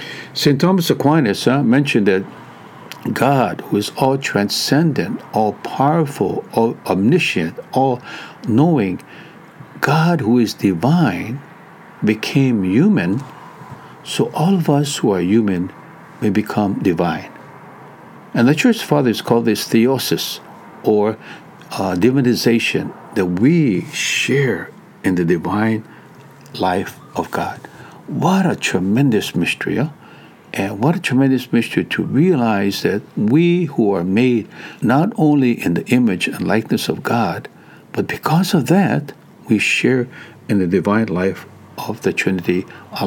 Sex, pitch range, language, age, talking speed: male, 110-165 Hz, English, 60-79, 130 wpm